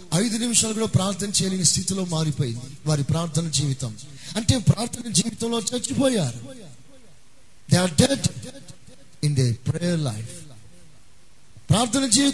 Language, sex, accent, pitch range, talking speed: Telugu, male, native, 140-230 Hz, 70 wpm